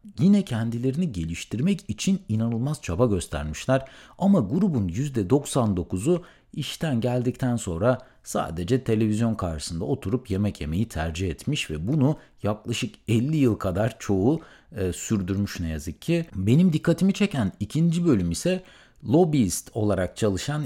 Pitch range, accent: 100-150 Hz, native